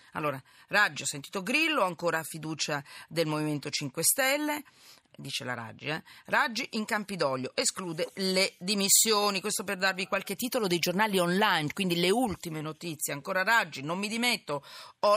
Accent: native